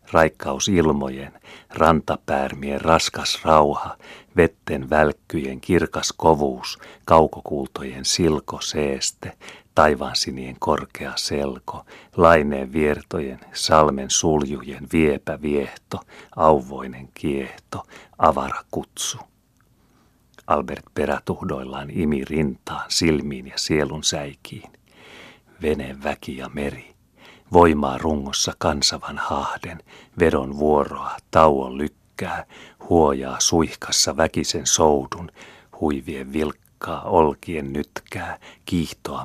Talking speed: 80 wpm